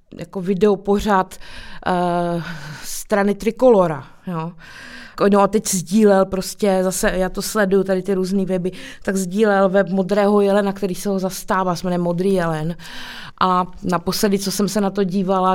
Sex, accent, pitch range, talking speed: female, native, 185-210 Hz, 160 wpm